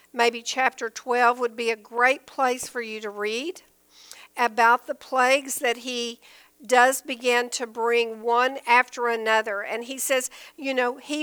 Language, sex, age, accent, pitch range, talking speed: English, female, 50-69, American, 215-270 Hz, 160 wpm